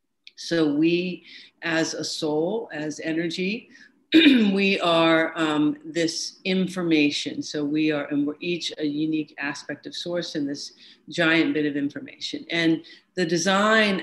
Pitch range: 160-185 Hz